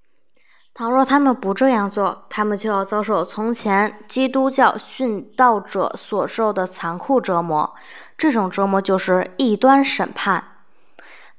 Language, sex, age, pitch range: Chinese, female, 10-29, 195-255 Hz